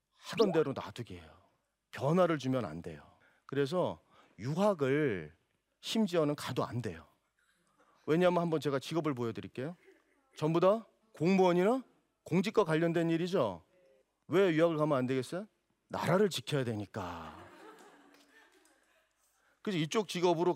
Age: 40-59